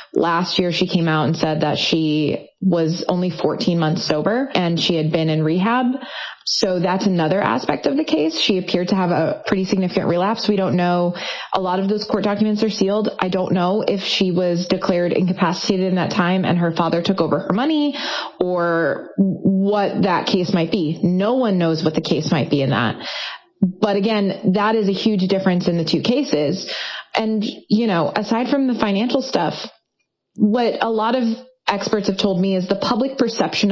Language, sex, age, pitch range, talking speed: English, female, 20-39, 180-220 Hz, 200 wpm